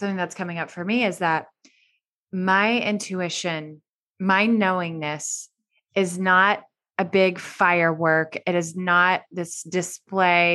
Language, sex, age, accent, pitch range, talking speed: English, female, 20-39, American, 170-200 Hz, 125 wpm